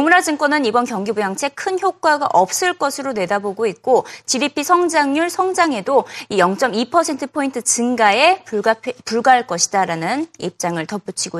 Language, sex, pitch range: Korean, female, 205-330 Hz